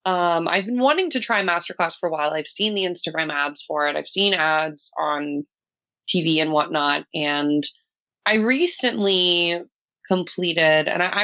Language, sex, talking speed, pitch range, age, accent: English, female, 160 wpm, 165-205 Hz, 20-39, American